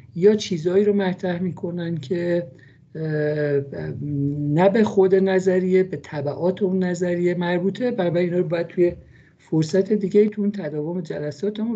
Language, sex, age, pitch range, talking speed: Persian, male, 50-69, 155-195 Hz, 130 wpm